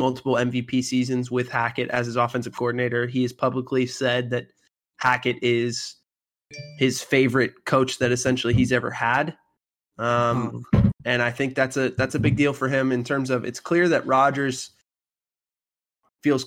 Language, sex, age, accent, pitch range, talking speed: English, male, 20-39, American, 120-130 Hz, 155 wpm